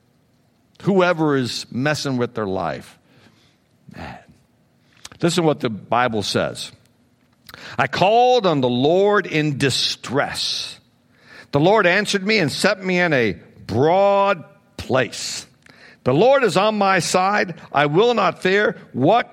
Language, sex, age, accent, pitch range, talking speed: English, male, 60-79, American, 120-165 Hz, 125 wpm